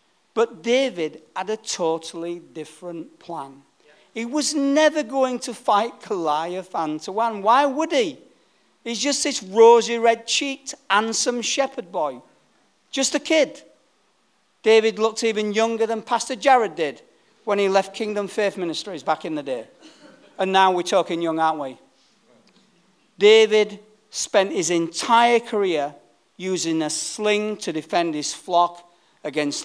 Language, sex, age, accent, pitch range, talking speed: English, male, 40-59, British, 170-225 Hz, 135 wpm